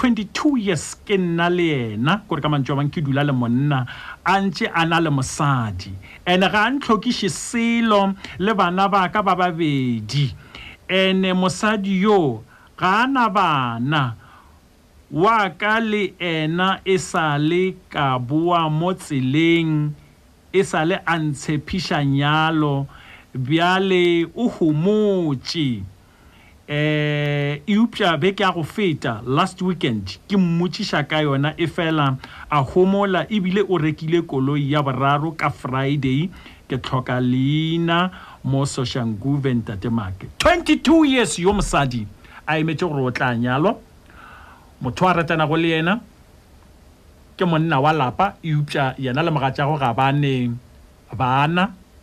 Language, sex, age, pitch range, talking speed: English, male, 50-69, 135-185 Hz, 80 wpm